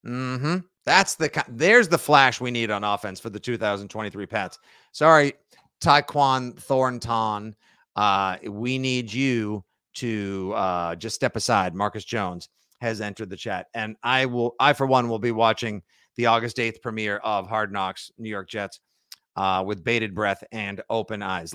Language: English